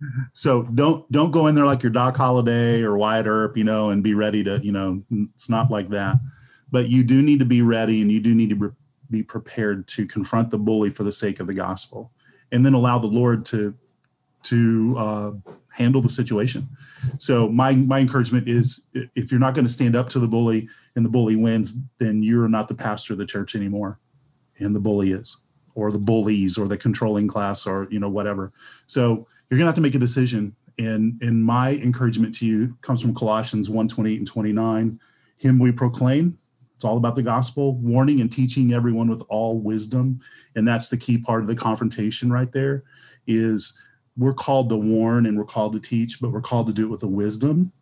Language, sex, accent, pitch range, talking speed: English, male, American, 110-125 Hz, 210 wpm